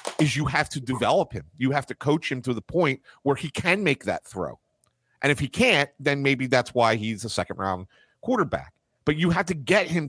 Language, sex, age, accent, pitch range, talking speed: English, male, 40-59, American, 130-180 Hz, 230 wpm